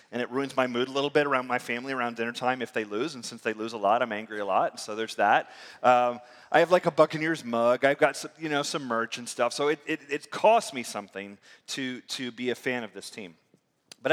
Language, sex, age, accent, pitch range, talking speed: English, male, 30-49, American, 120-160 Hz, 265 wpm